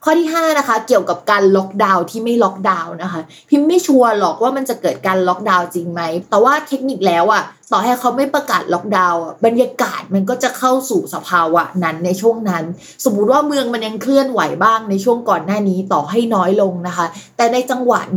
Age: 20-39